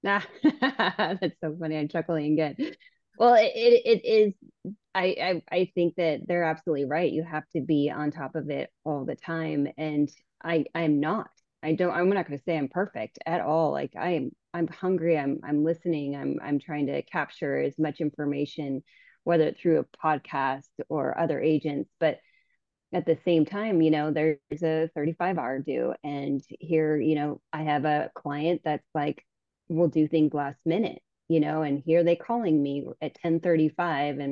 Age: 20-39